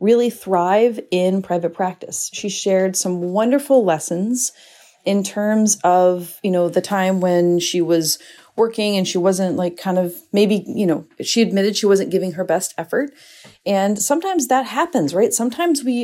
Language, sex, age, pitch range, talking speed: English, female, 30-49, 185-245 Hz, 170 wpm